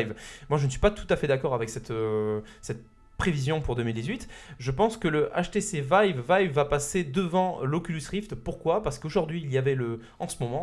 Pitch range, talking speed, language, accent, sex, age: 115-150 Hz, 215 wpm, French, French, male, 20-39